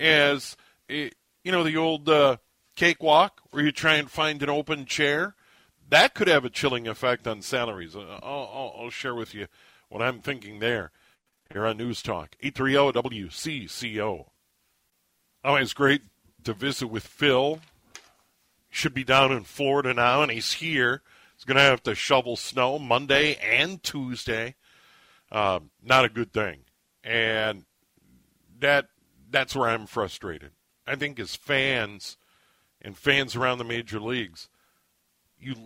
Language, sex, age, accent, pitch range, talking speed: English, male, 50-69, American, 115-140 Hz, 145 wpm